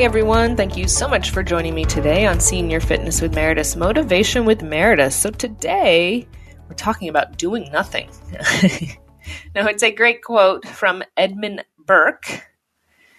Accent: American